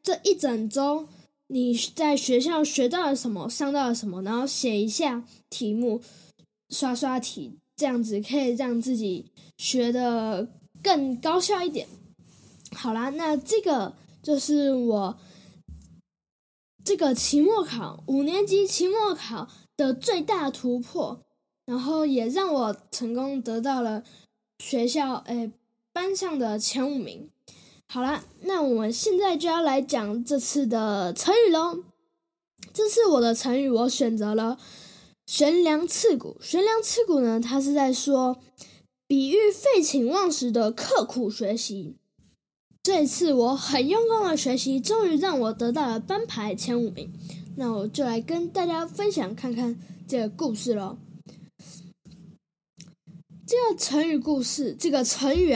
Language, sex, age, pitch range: Chinese, female, 10-29, 225-310 Hz